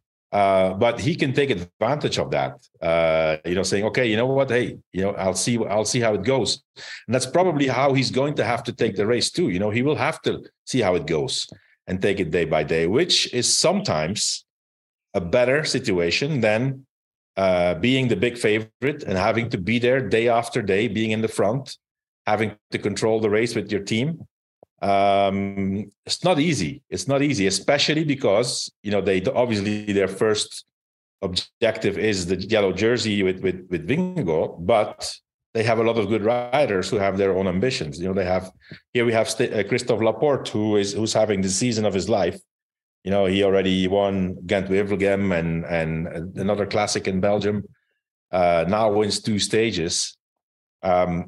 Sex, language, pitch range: male, English, 95-120 Hz